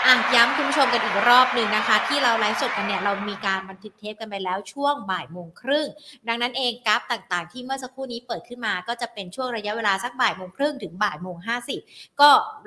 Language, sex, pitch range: Thai, female, 200-255 Hz